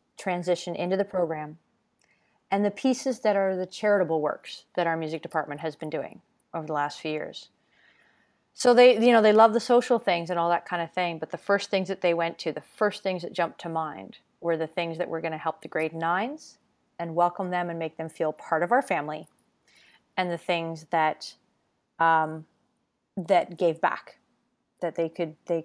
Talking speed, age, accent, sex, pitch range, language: 205 wpm, 30-49, American, female, 160-195 Hz, English